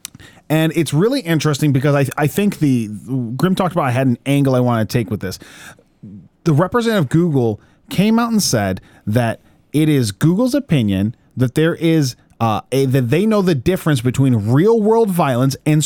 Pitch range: 125-175 Hz